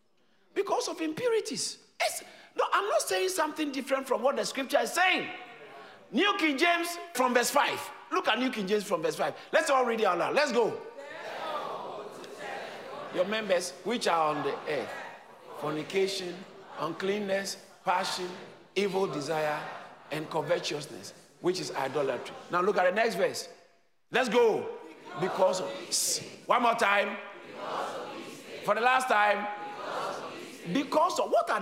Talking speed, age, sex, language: 145 wpm, 50-69, male, English